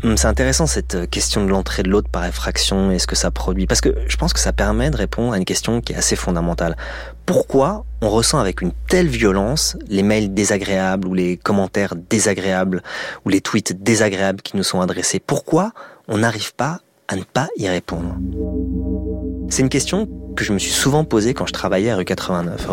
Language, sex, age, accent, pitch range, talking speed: French, male, 30-49, French, 90-115 Hz, 205 wpm